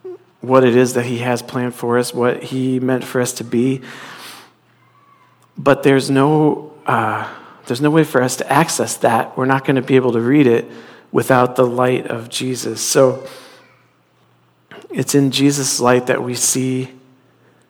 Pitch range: 125-140 Hz